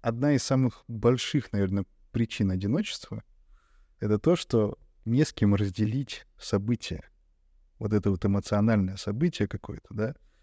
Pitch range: 105-140 Hz